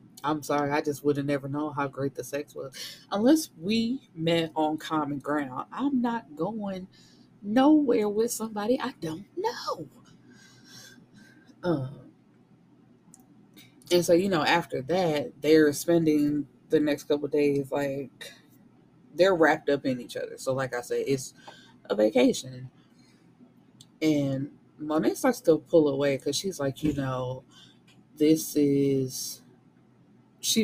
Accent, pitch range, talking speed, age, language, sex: American, 140-175 Hz, 135 wpm, 20-39, English, female